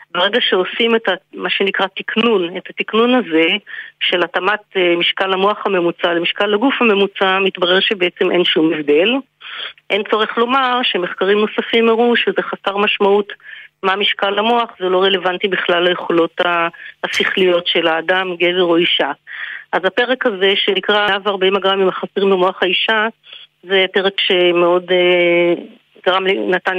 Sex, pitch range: female, 180-205 Hz